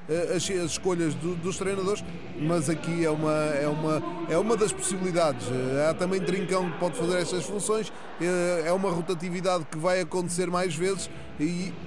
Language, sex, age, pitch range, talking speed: Portuguese, male, 20-39, 165-185 Hz, 150 wpm